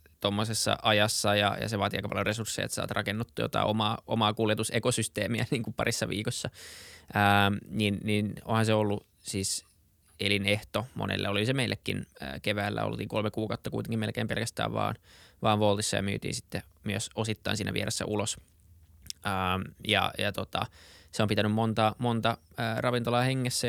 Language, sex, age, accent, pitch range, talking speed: Finnish, male, 20-39, native, 100-110 Hz, 160 wpm